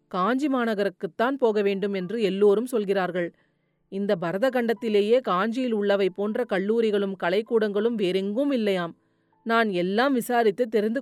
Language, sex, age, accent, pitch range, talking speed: Tamil, female, 30-49, native, 190-240 Hz, 115 wpm